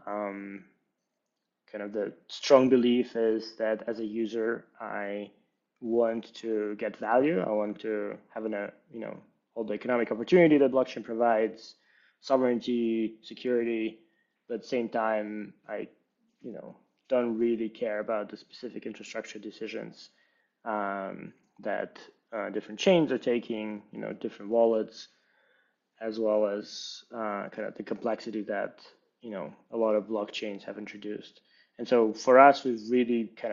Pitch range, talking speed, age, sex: 105-115 Hz, 150 wpm, 20-39, male